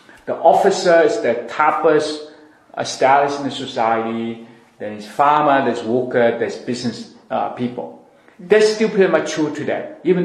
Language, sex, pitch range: Chinese, male, 125-175 Hz